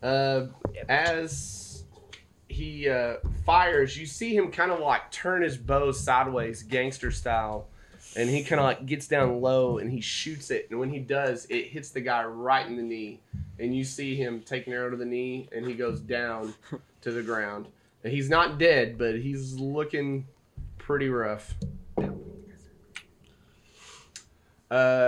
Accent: American